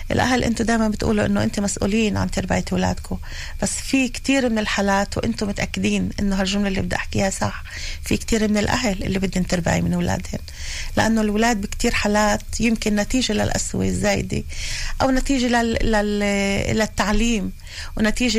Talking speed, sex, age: 155 wpm, female, 40-59